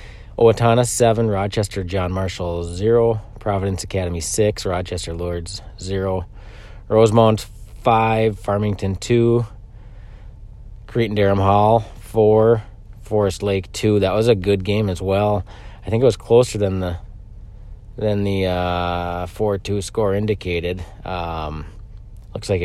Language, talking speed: English, 125 wpm